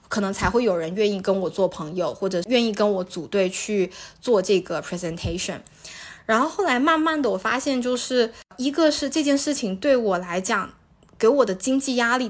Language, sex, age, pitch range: Chinese, female, 20-39, 185-230 Hz